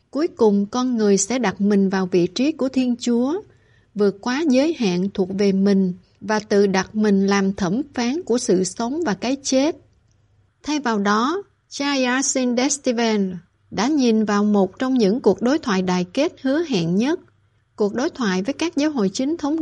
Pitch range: 200-260 Hz